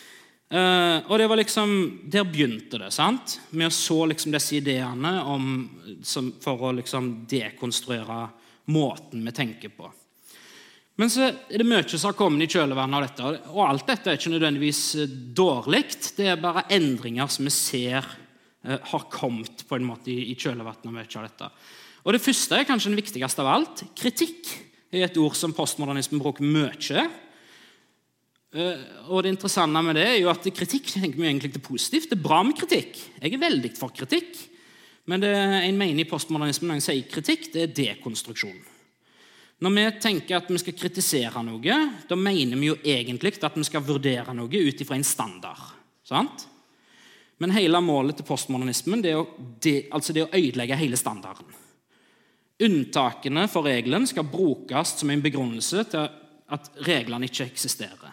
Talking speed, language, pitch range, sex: 165 wpm, English, 135-190 Hz, male